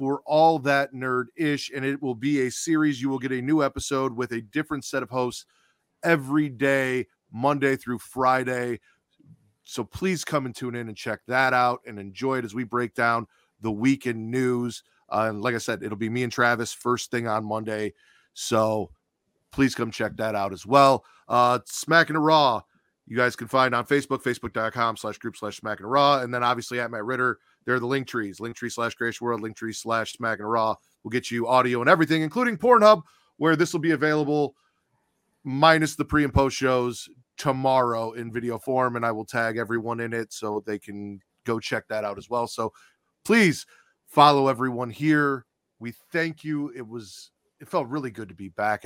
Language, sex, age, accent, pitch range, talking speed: English, male, 40-59, American, 110-135 Hz, 200 wpm